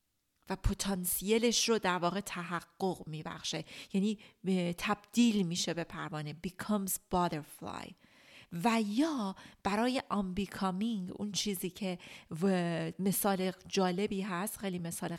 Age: 40-59